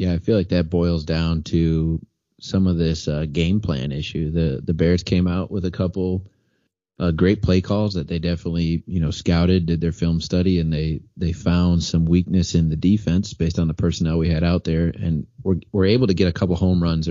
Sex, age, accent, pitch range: male, 30-49, American, 80-95 Hz